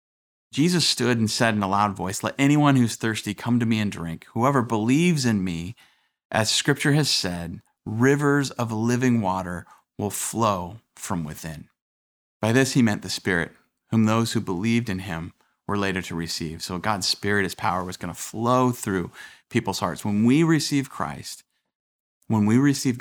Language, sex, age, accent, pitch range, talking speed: English, male, 30-49, American, 95-125 Hz, 175 wpm